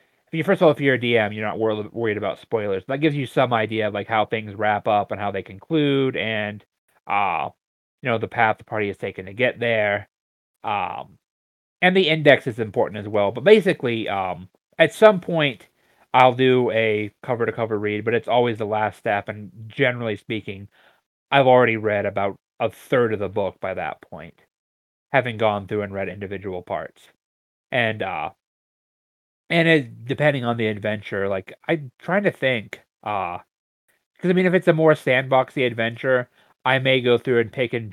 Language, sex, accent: English, male, American